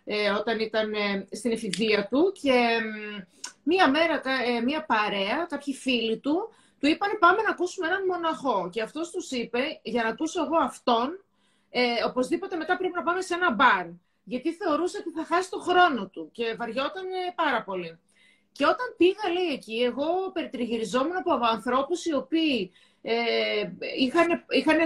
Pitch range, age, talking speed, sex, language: 230-385 Hz, 30-49, 145 wpm, female, Greek